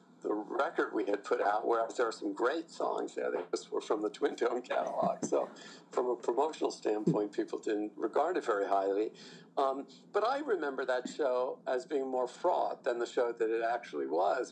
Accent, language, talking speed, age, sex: American, English, 200 wpm, 50-69, male